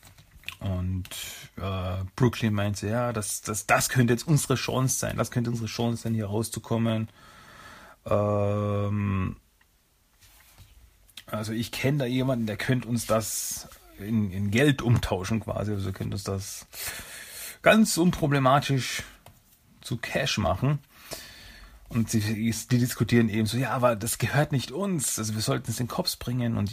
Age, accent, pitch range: 40-59, German, 105-125 Hz